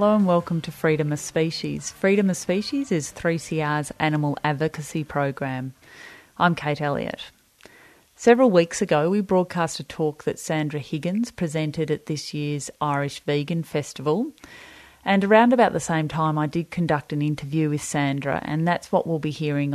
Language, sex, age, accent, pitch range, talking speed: English, female, 30-49, Australian, 150-175 Hz, 165 wpm